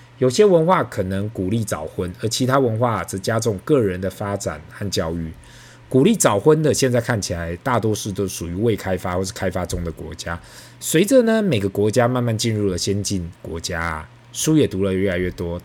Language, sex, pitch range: Chinese, male, 95-130 Hz